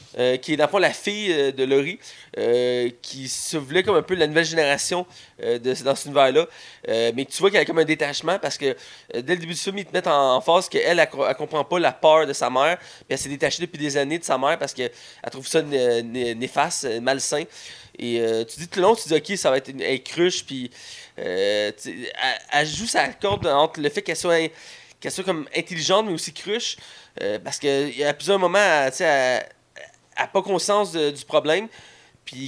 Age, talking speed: 30-49, 235 wpm